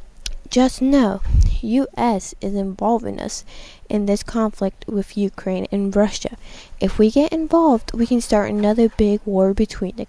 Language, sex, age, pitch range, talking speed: English, female, 20-39, 200-240 Hz, 150 wpm